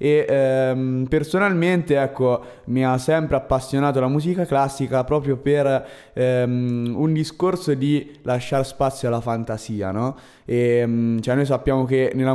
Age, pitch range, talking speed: 20-39, 120-145 Hz, 135 wpm